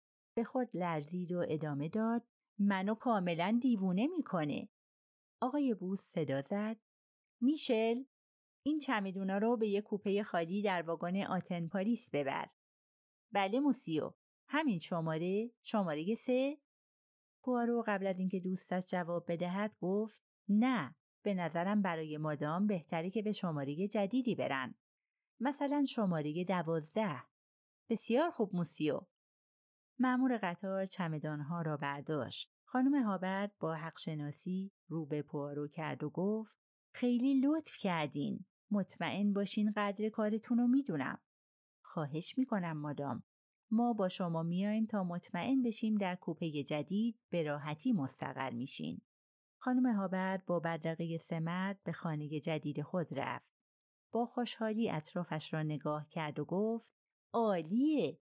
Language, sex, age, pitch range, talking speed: Persian, female, 30-49, 165-225 Hz, 120 wpm